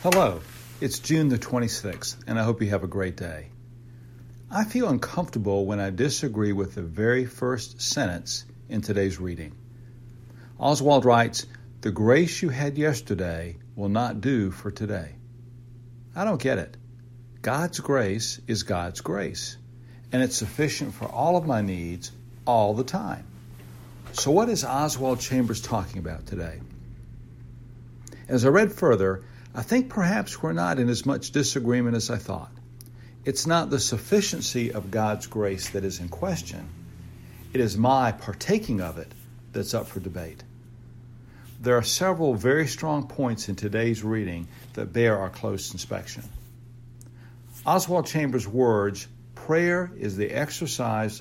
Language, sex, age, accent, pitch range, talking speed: English, male, 60-79, American, 105-125 Hz, 145 wpm